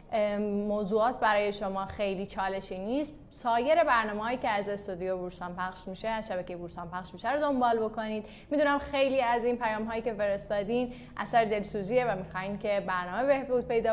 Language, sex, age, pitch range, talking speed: Persian, female, 10-29, 200-245 Hz, 165 wpm